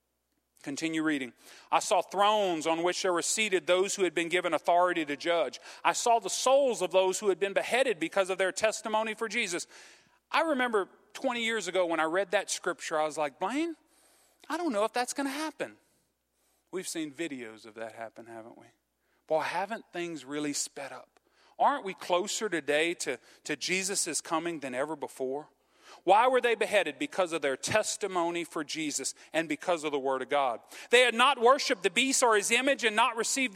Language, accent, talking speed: English, American, 195 wpm